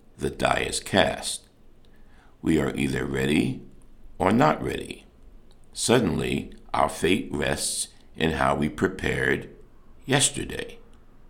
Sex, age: male, 60-79